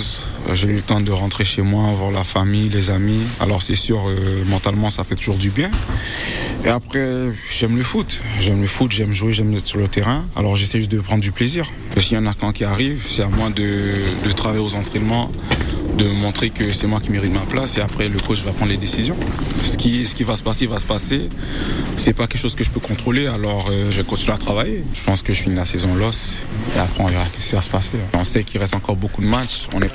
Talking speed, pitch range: 260 wpm, 95-120 Hz